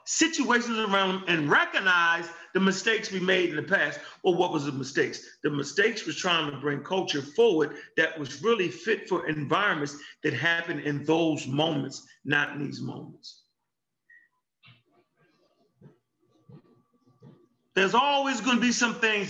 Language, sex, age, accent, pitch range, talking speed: English, male, 40-59, American, 155-225 Hz, 145 wpm